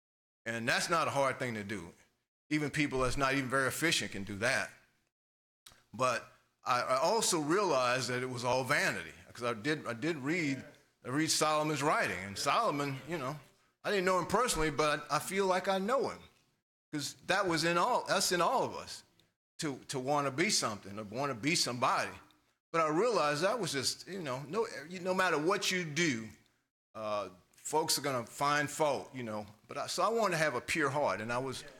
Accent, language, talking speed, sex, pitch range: American, English, 210 wpm, male, 120-150 Hz